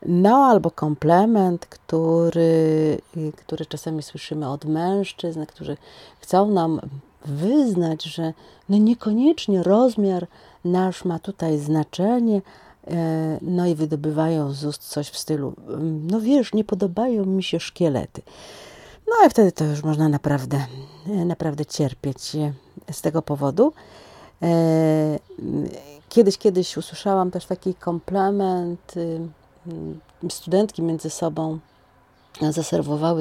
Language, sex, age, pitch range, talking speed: Polish, female, 40-59, 160-200 Hz, 105 wpm